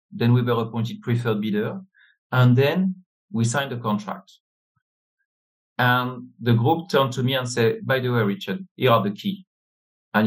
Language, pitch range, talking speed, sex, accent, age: English, 115-145 Hz, 170 wpm, male, French, 50-69